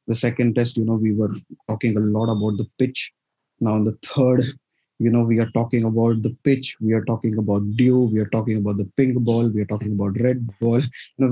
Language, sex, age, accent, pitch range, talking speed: English, male, 20-39, Indian, 110-125 Hz, 240 wpm